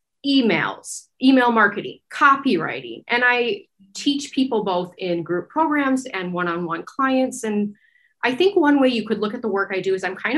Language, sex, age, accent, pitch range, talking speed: English, female, 30-49, American, 190-245 Hz, 180 wpm